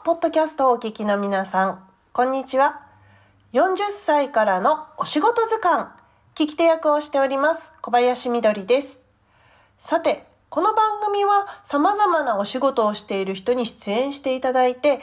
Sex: female